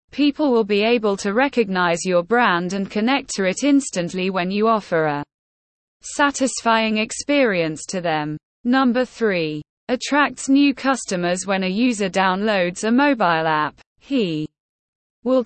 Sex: female